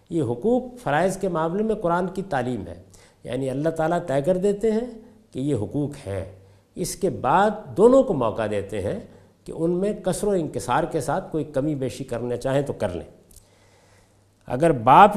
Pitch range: 115-185 Hz